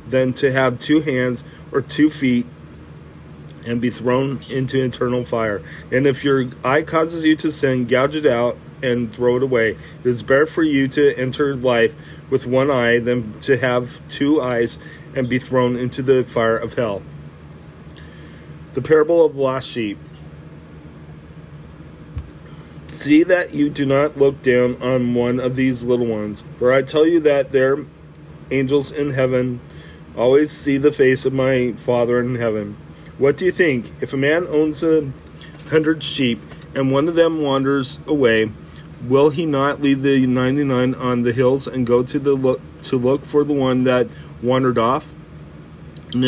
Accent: American